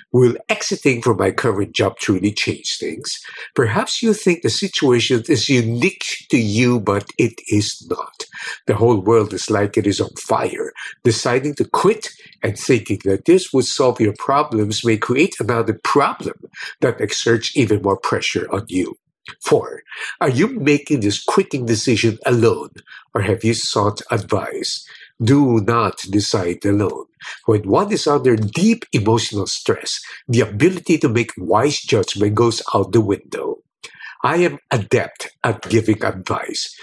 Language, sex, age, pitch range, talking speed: English, male, 50-69, 105-140 Hz, 150 wpm